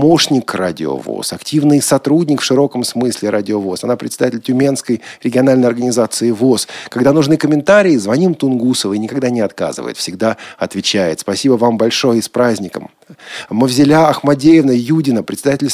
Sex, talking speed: male, 135 wpm